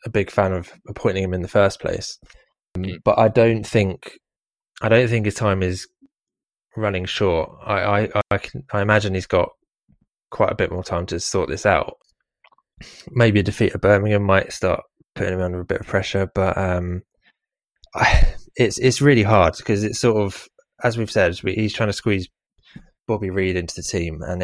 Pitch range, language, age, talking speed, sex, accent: 95-110 Hz, English, 20-39, 190 wpm, male, British